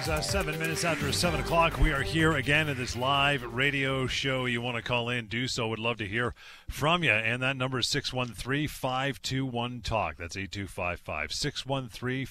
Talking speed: 230 wpm